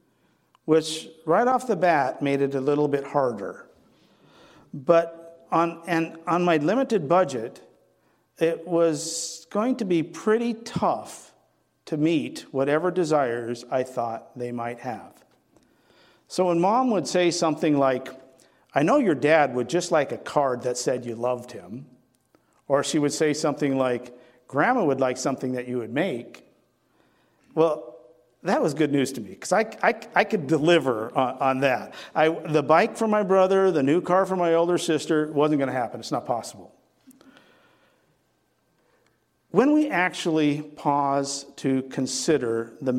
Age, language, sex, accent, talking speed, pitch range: 50-69, English, male, American, 155 wpm, 135-175 Hz